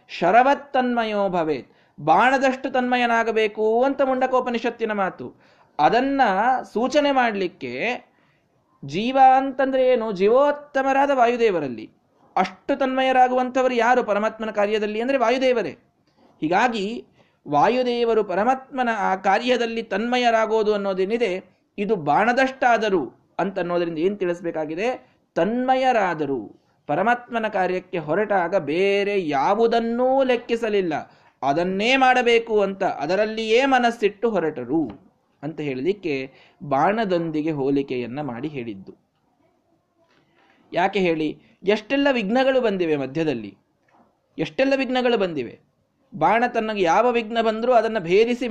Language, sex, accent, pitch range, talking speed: Kannada, male, native, 175-250 Hz, 85 wpm